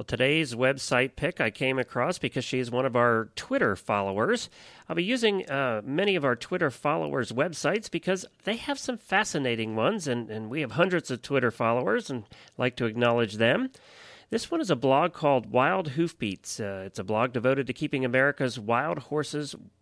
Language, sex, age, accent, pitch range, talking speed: English, male, 40-59, American, 125-155 Hz, 185 wpm